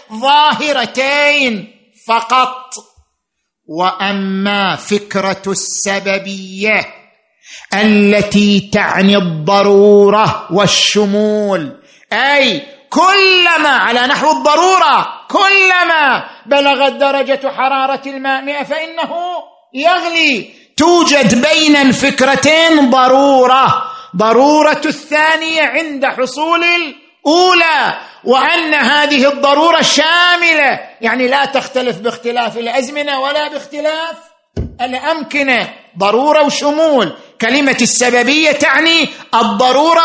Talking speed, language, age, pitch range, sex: 70 wpm, Arabic, 50-69, 220-305 Hz, male